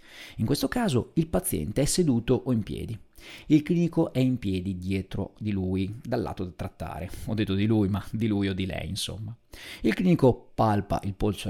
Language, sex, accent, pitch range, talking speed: Italian, male, native, 95-130 Hz, 200 wpm